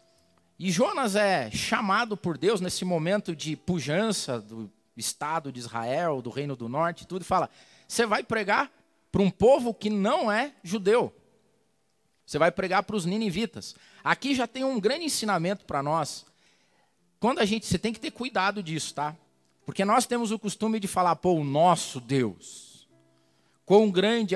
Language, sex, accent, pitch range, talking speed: Portuguese, male, Brazilian, 165-225 Hz, 165 wpm